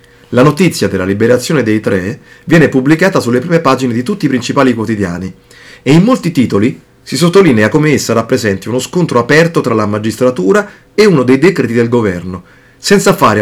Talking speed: 175 wpm